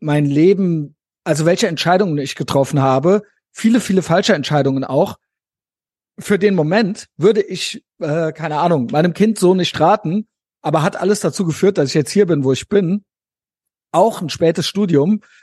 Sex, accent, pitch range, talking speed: male, German, 150-190 Hz, 165 wpm